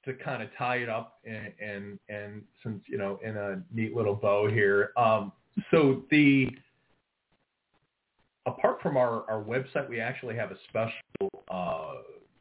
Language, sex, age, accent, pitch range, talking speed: English, male, 30-49, American, 105-130 Hz, 155 wpm